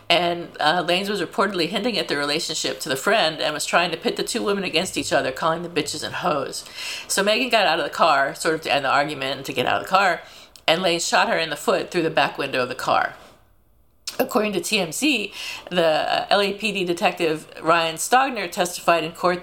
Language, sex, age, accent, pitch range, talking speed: English, female, 50-69, American, 160-205 Hz, 225 wpm